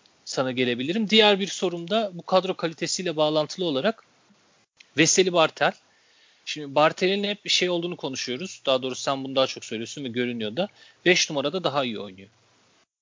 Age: 40-59